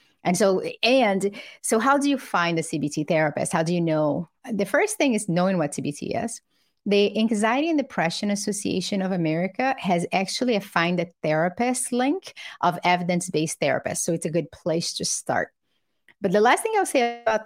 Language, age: English, 30-49